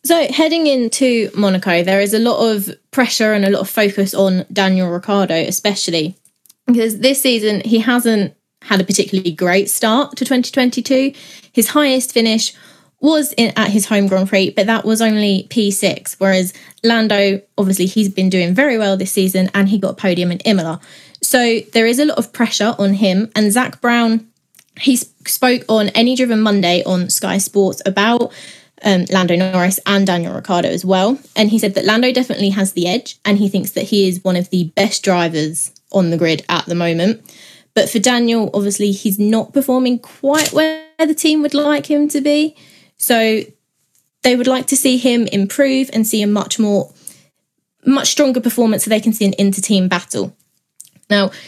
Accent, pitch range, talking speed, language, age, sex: British, 195-255 Hz, 185 wpm, English, 20-39, female